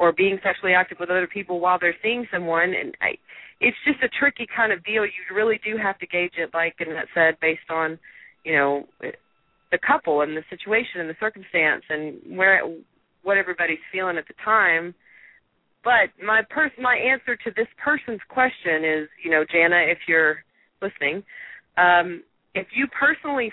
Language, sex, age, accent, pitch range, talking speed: English, female, 30-49, American, 165-210 Hz, 180 wpm